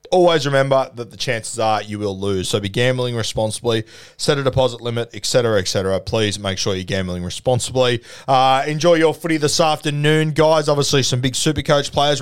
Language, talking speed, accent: English, 195 wpm, Australian